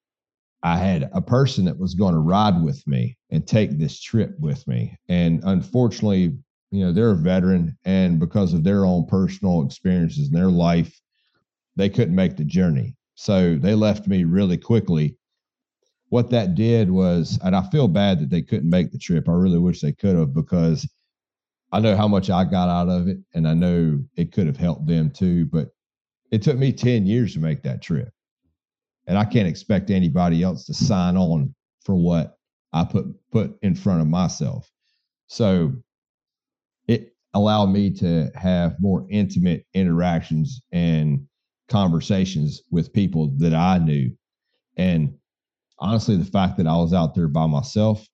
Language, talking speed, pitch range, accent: English, 175 wpm, 80-100 Hz, American